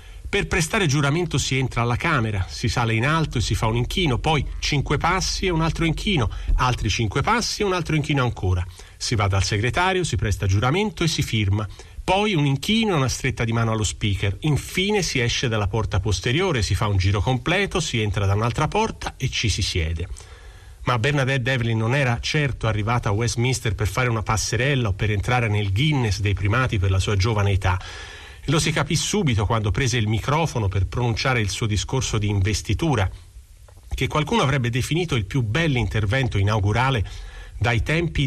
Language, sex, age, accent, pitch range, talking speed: Italian, male, 40-59, native, 100-135 Hz, 190 wpm